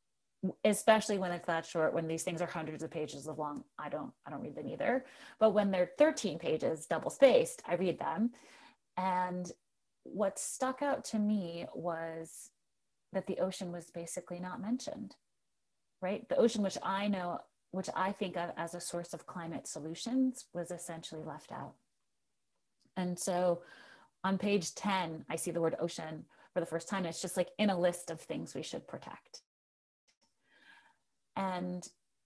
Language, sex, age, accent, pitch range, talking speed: English, female, 30-49, American, 170-200 Hz, 170 wpm